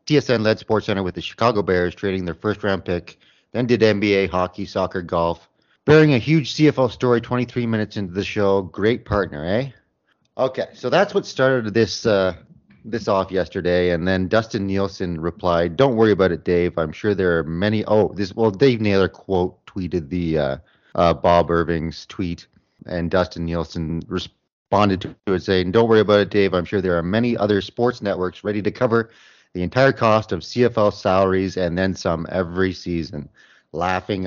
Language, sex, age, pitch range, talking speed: English, male, 30-49, 90-115 Hz, 185 wpm